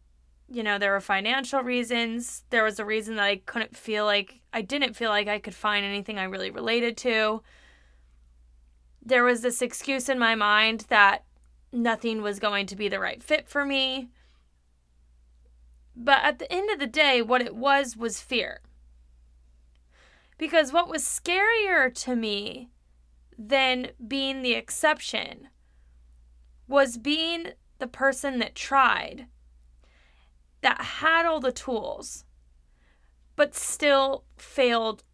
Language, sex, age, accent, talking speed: English, female, 20-39, American, 140 wpm